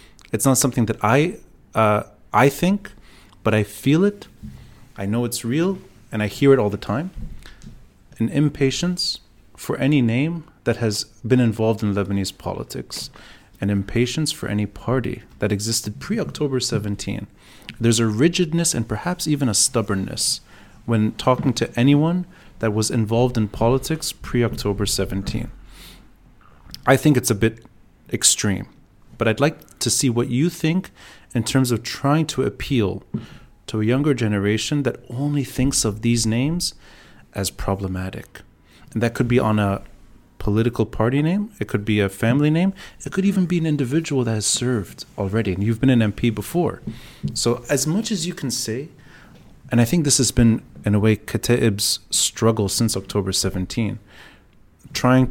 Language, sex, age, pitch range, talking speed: English, male, 30-49, 105-135 Hz, 160 wpm